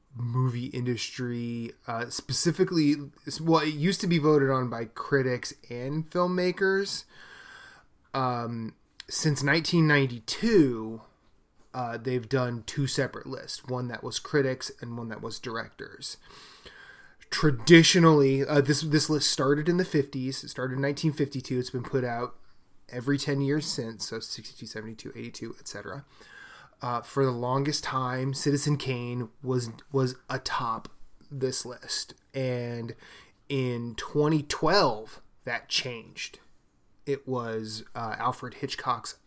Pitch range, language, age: 120-155 Hz, English, 20-39